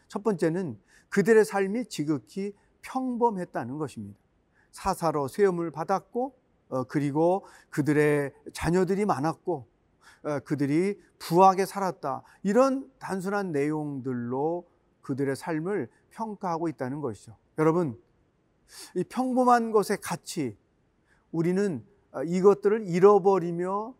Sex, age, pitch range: male, 40-59, 155-205 Hz